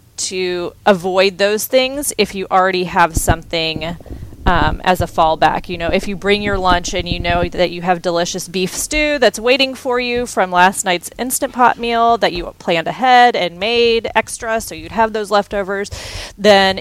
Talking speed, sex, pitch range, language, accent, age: 185 wpm, female, 175-210 Hz, English, American, 30-49